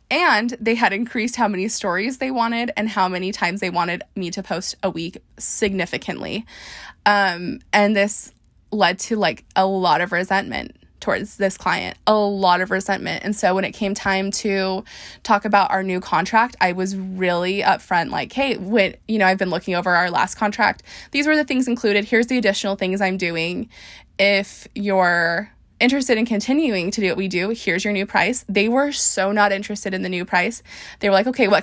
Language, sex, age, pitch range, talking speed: English, female, 20-39, 185-220 Hz, 200 wpm